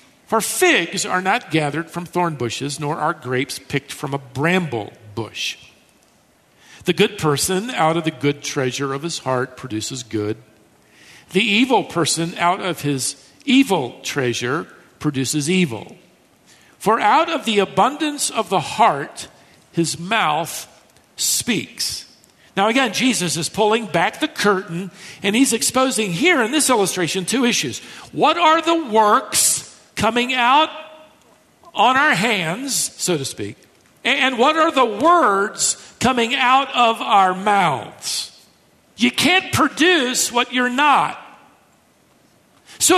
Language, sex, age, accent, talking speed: English, male, 50-69, American, 135 wpm